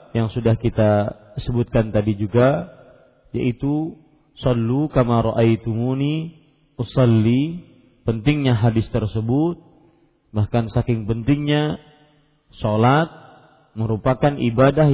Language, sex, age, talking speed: Malay, male, 40-59, 80 wpm